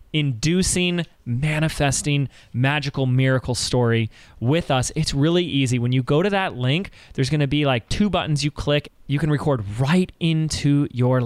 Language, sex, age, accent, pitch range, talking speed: English, male, 20-39, American, 120-155 Hz, 160 wpm